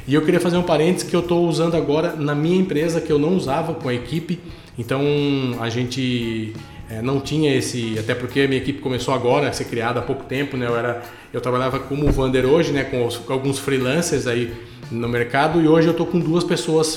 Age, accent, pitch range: 20-39, Brazilian, 125-155 Hz